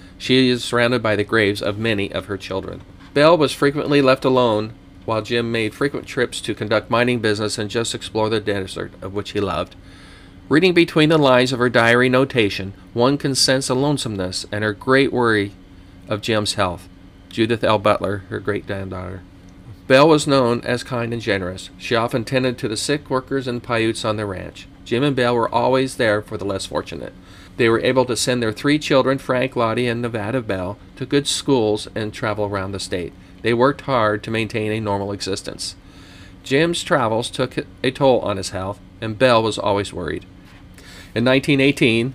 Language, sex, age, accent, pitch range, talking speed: English, male, 40-59, American, 95-125 Hz, 190 wpm